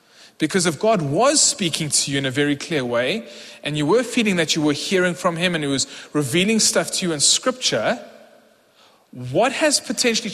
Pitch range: 140-185 Hz